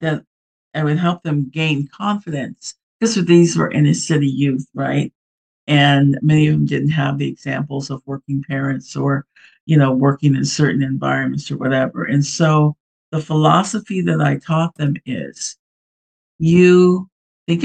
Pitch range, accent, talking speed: 140-165 Hz, American, 155 wpm